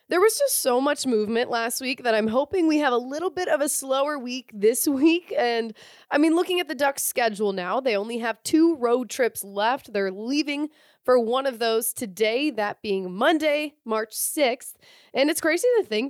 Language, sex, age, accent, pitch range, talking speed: English, female, 20-39, American, 220-300 Hz, 205 wpm